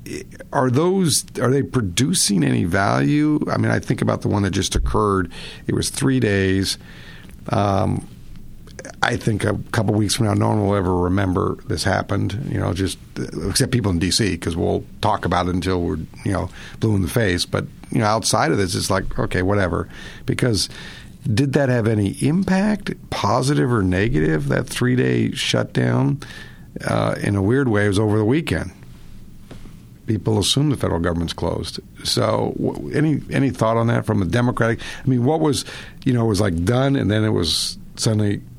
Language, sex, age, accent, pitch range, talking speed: English, male, 50-69, American, 95-125 Hz, 185 wpm